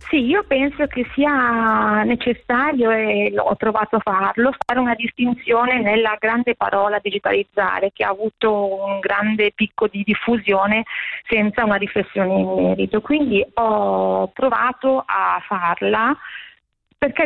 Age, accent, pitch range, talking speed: 30-49, native, 200-245 Hz, 130 wpm